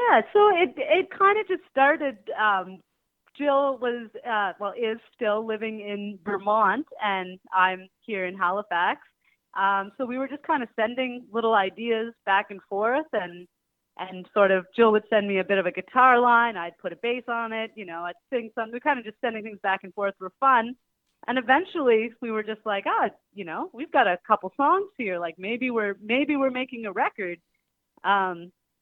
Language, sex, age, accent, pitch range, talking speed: English, female, 30-49, American, 190-245 Hz, 200 wpm